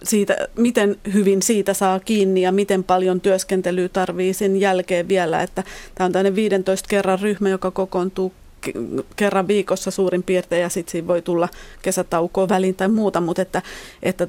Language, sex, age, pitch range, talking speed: Finnish, female, 30-49, 185-200 Hz, 165 wpm